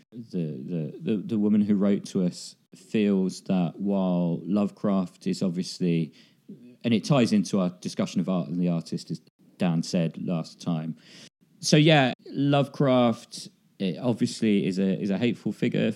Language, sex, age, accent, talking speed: English, male, 40-59, British, 155 wpm